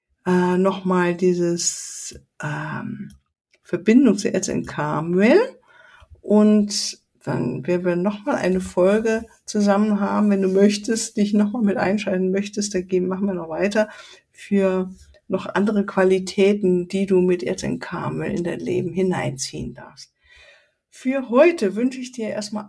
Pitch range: 185-225 Hz